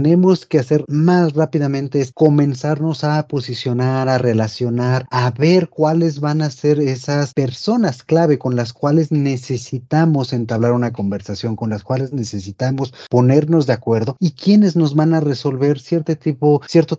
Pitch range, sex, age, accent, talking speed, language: 120-160 Hz, male, 40-59, Mexican, 150 wpm, Spanish